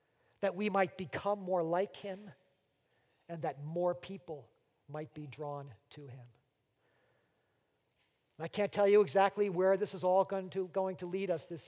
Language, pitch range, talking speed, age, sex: English, 155-200 Hz, 160 wpm, 40-59, male